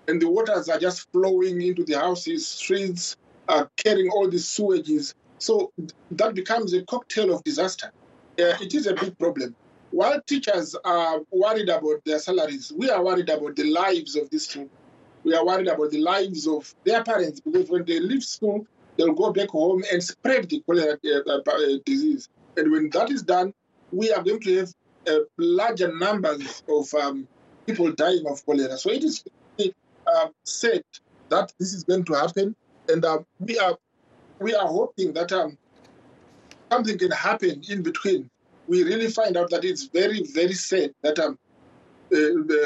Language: English